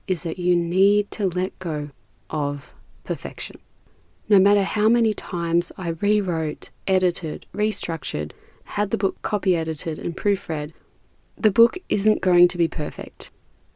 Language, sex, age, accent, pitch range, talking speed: English, female, 20-39, Australian, 165-200 Hz, 135 wpm